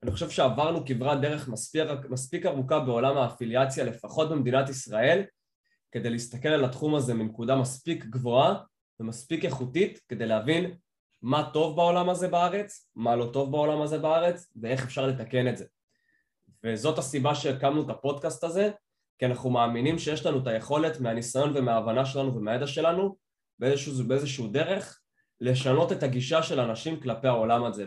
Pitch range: 120-160 Hz